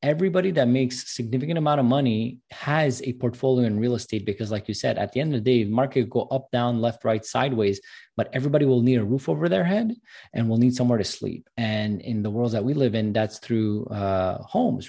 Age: 20-39